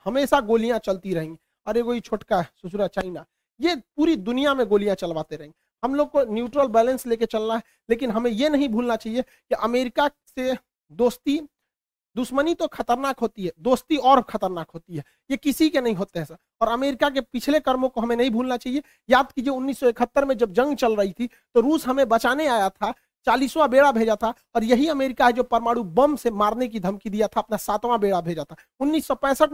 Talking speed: 205 wpm